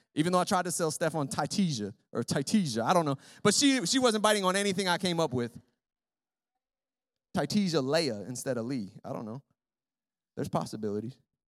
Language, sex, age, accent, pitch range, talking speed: English, male, 20-39, American, 135-195 Hz, 180 wpm